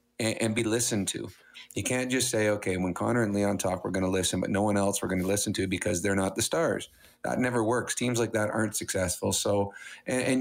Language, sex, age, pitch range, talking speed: English, male, 40-59, 100-115 Hz, 250 wpm